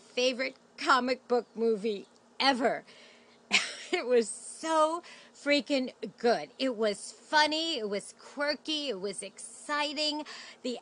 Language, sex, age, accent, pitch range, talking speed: English, female, 40-59, American, 215-275 Hz, 110 wpm